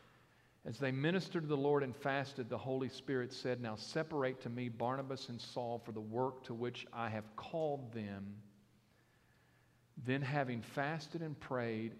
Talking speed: 165 wpm